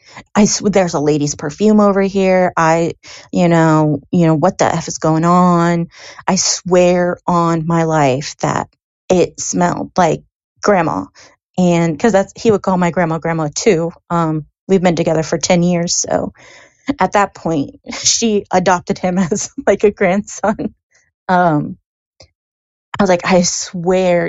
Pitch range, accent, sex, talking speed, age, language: 170-205 Hz, American, female, 155 wpm, 30-49, English